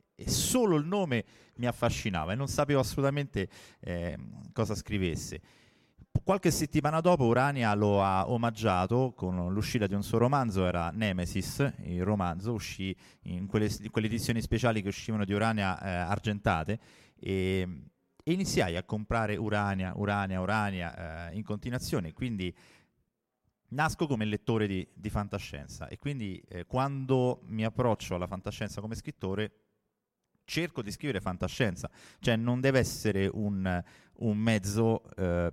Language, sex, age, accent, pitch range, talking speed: Italian, male, 30-49, native, 95-120 Hz, 140 wpm